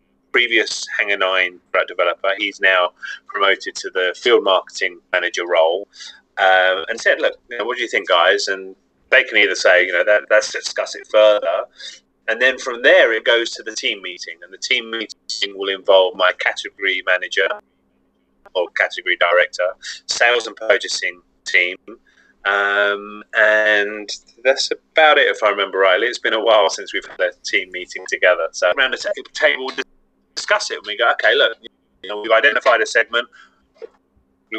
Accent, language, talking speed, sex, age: British, English, 165 wpm, male, 30-49